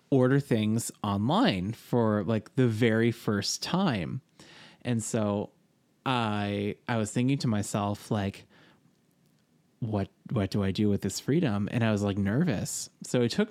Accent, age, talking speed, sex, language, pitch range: American, 20-39, 150 wpm, male, English, 110-140 Hz